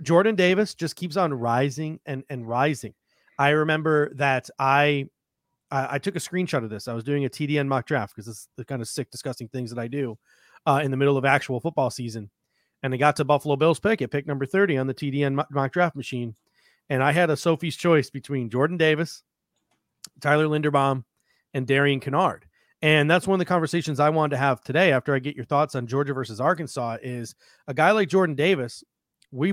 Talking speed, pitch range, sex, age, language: 210 wpm, 130-155 Hz, male, 30-49, English